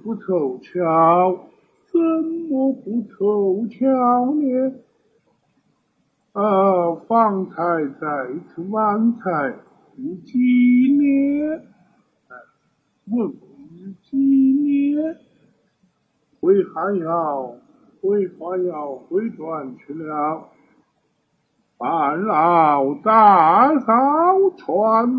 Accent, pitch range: American, 195-290 Hz